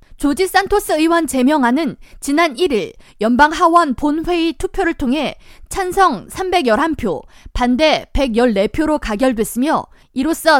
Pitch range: 255-345 Hz